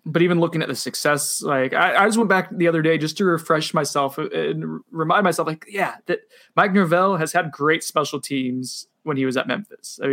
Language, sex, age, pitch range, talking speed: English, male, 20-39, 130-165 Hz, 235 wpm